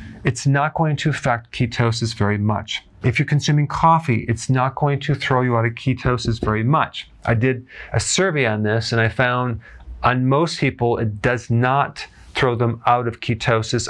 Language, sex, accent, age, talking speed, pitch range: English, male, American, 40-59, 185 wpm, 115-135 Hz